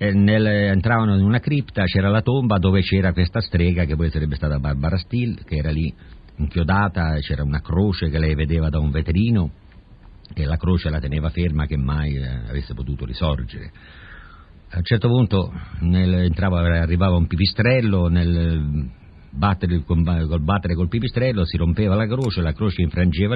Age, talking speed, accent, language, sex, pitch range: 50-69, 155 wpm, native, Italian, male, 75-95 Hz